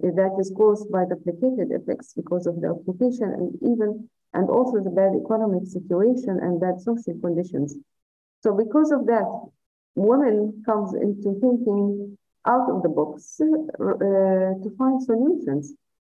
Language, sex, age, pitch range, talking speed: English, female, 50-69, 180-230 Hz, 145 wpm